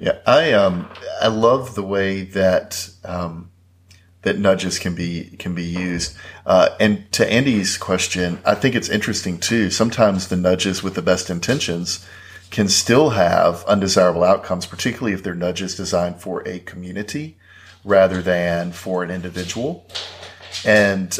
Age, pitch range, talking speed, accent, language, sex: 40-59, 90-100 Hz, 145 wpm, American, English, male